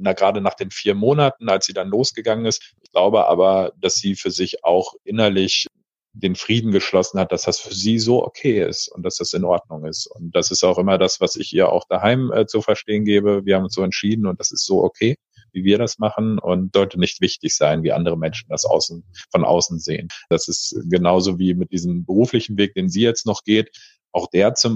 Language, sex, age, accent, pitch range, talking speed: German, male, 50-69, German, 90-110 Hz, 230 wpm